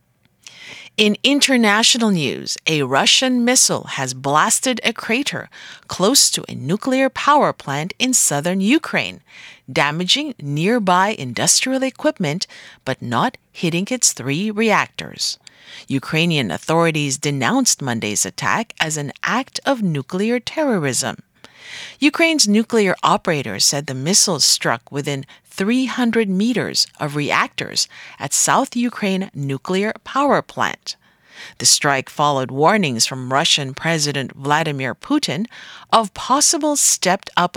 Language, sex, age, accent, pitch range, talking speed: English, female, 40-59, American, 145-225 Hz, 110 wpm